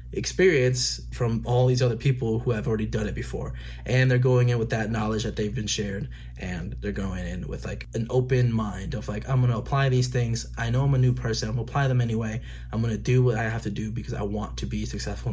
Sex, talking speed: male, 250 wpm